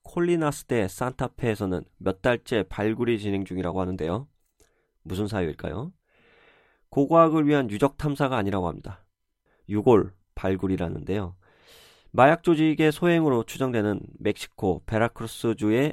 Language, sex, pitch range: Korean, male, 95-140 Hz